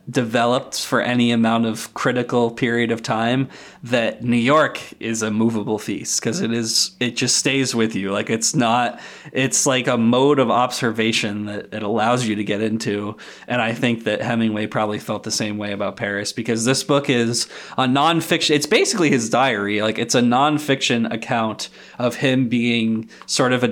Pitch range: 110-125 Hz